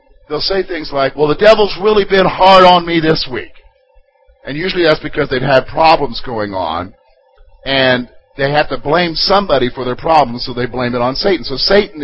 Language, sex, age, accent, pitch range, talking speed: English, male, 50-69, American, 135-210 Hz, 200 wpm